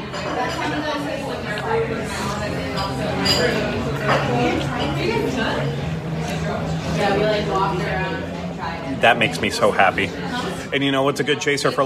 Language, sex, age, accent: English, male, 30-49, American